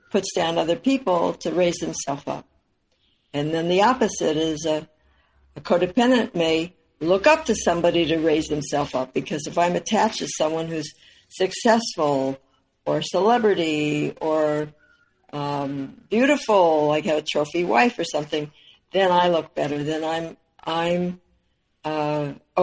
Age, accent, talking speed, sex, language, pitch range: 60-79, American, 140 wpm, female, English, 150-185 Hz